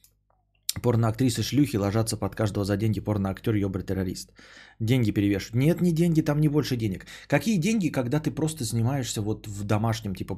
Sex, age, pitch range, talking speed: male, 20-39, 100-125 Hz, 160 wpm